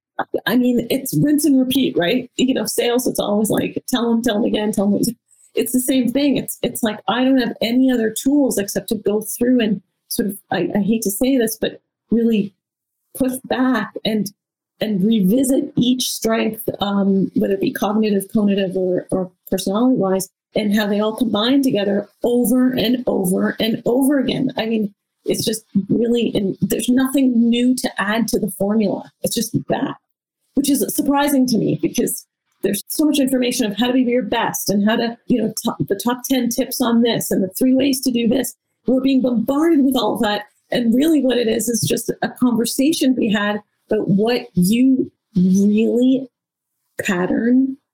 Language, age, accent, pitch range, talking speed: English, 30-49, American, 205-255 Hz, 185 wpm